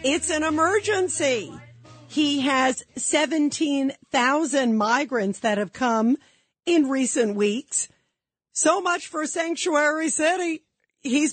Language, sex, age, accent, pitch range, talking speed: English, female, 50-69, American, 225-305 Hz, 100 wpm